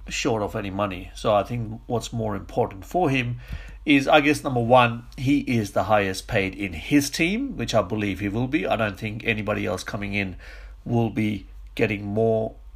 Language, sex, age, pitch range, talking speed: English, male, 50-69, 105-140 Hz, 200 wpm